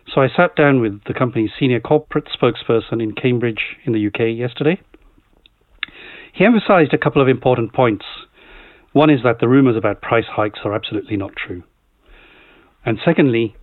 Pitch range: 110-130 Hz